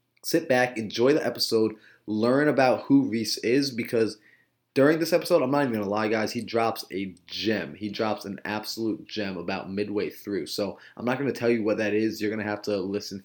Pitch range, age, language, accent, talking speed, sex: 105-120 Hz, 20-39, English, American, 220 wpm, male